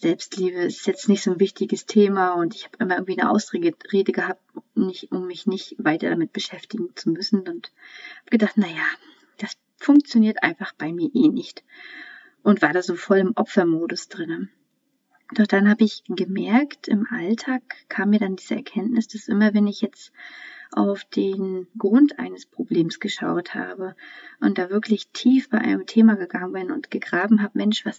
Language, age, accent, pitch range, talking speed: German, 30-49, German, 190-245 Hz, 175 wpm